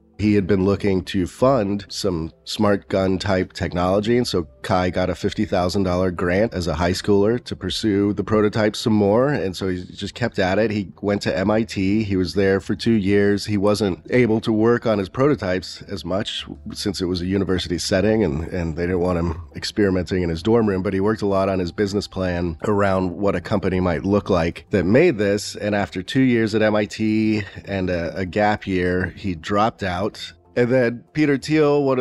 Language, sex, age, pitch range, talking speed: English, male, 30-49, 95-110 Hz, 205 wpm